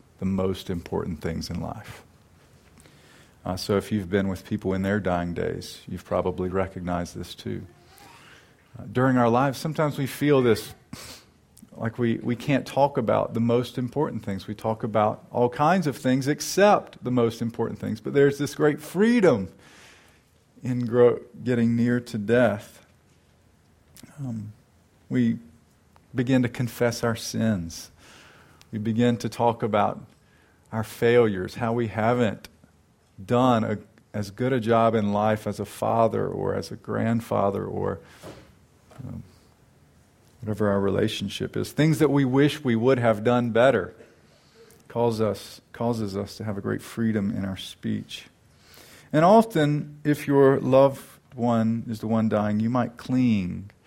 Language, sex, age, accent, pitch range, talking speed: English, male, 40-59, American, 100-125 Hz, 150 wpm